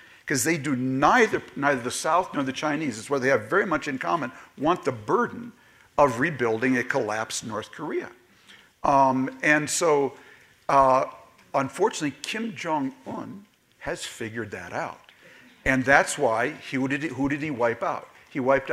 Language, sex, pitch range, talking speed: English, male, 125-150 Hz, 165 wpm